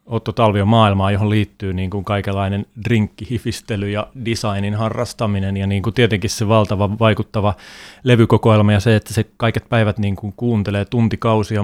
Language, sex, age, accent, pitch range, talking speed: Finnish, male, 30-49, native, 105-120 Hz, 155 wpm